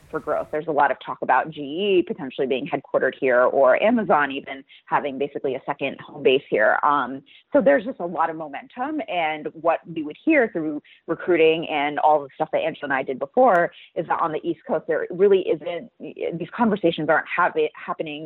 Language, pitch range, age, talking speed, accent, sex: English, 145-195 Hz, 30-49, 205 wpm, American, female